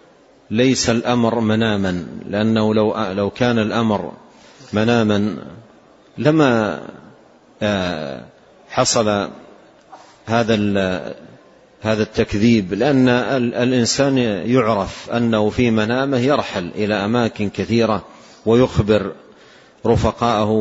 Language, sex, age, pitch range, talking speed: Arabic, male, 40-59, 105-120 Hz, 70 wpm